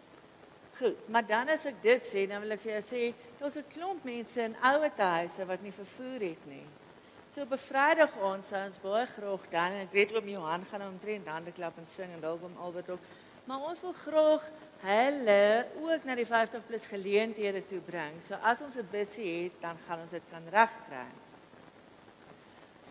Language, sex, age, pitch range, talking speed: English, female, 50-69, 170-225 Hz, 195 wpm